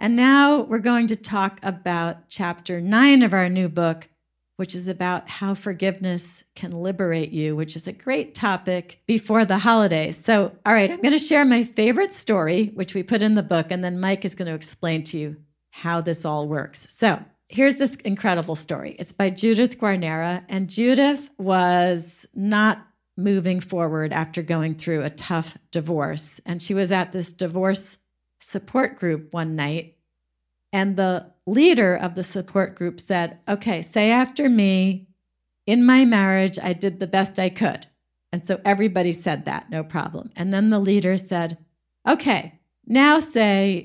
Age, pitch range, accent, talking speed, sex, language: 50-69, 170-215 Hz, American, 170 wpm, female, English